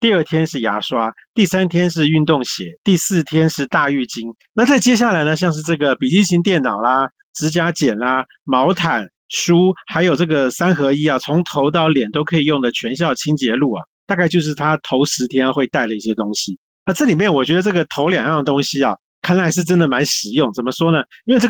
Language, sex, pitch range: Chinese, male, 140-180 Hz